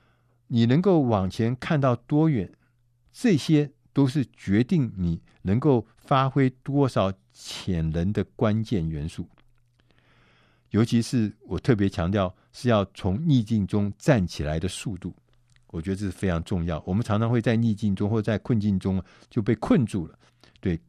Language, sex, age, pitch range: Chinese, male, 50-69, 95-125 Hz